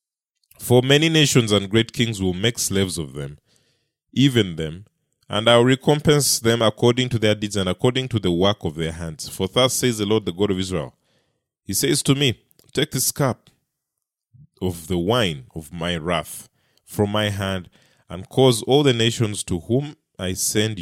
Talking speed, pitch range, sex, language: 185 wpm, 90-125 Hz, male, English